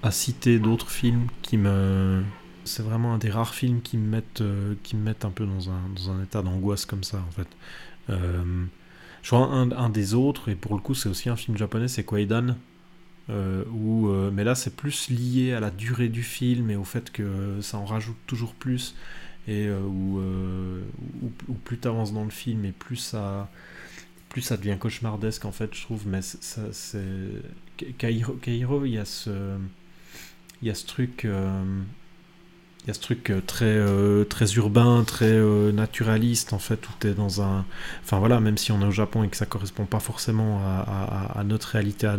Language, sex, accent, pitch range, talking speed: French, male, French, 100-120 Hz, 210 wpm